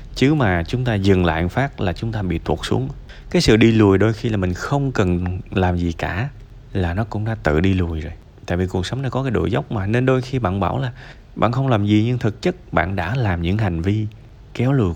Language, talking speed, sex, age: Vietnamese, 260 wpm, male, 20-39